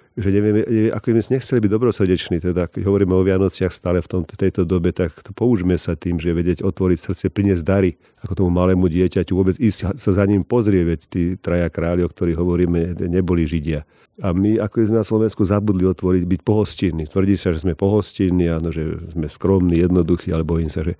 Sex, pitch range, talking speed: male, 90-100 Hz, 190 wpm